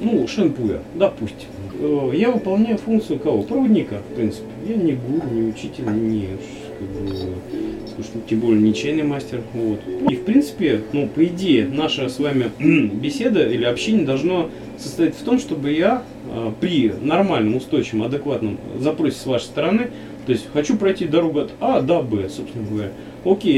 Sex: male